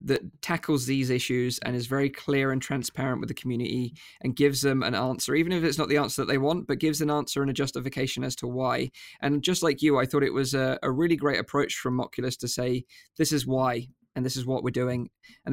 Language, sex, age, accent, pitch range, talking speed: English, male, 20-39, British, 130-145 Hz, 245 wpm